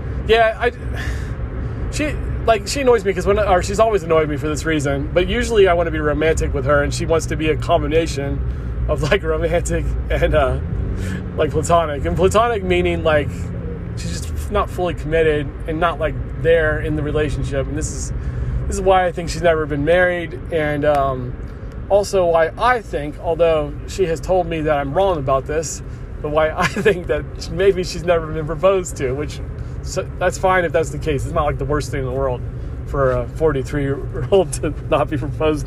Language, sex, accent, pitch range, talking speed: English, male, American, 125-170 Hz, 200 wpm